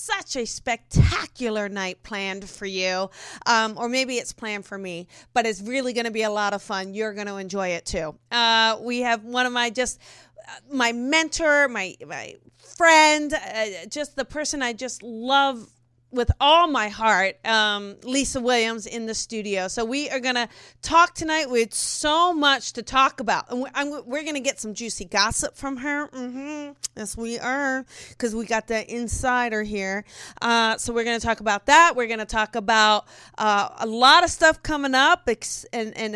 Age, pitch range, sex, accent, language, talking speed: 40-59, 215-275 Hz, female, American, English, 195 wpm